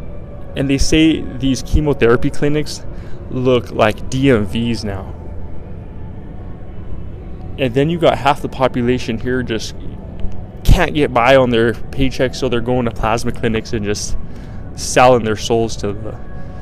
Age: 20-39